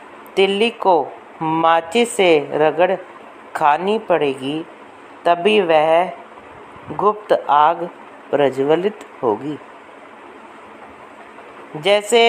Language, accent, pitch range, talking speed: Hindi, native, 155-200 Hz, 70 wpm